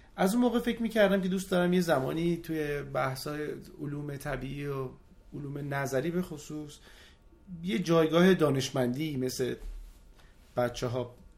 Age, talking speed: 30-49, 125 wpm